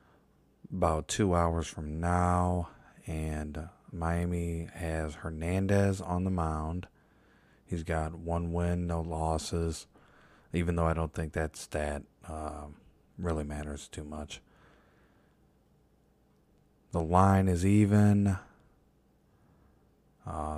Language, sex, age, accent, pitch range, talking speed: English, male, 20-39, American, 75-90 Hz, 100 wpm